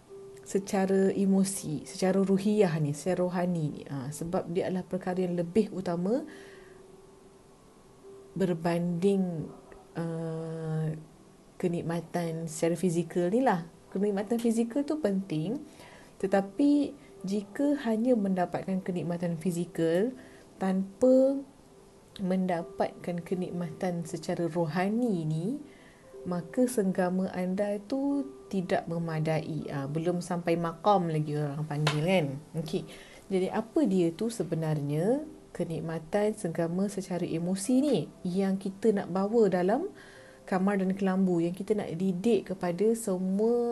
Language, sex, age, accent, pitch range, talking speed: English, female, 30-49, Malaysian, 170-210 Hz, 105 wpm